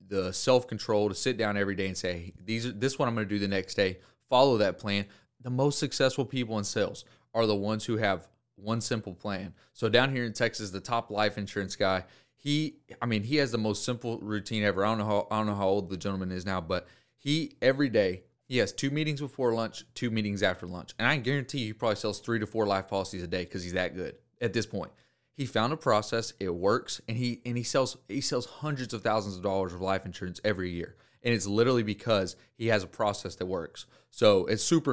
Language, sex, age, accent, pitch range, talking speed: English, male, 30-49, American, 95-120 Hz, 245 wpm